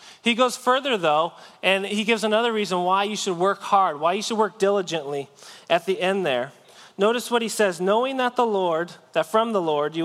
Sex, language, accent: male, English, American